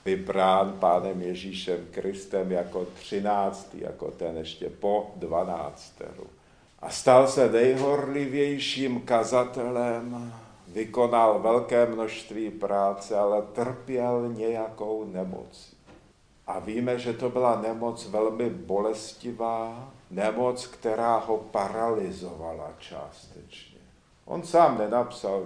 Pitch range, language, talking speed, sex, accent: 95-120 Hz, Czech, 95 wpm, male, native